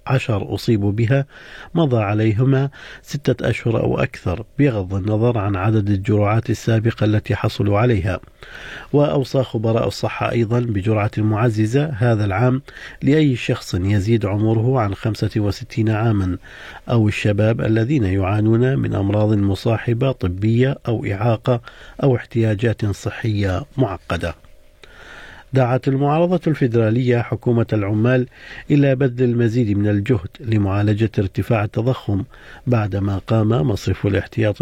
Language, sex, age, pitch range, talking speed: Arabic, male, 50-69, 105-125 Hz, 110 wpm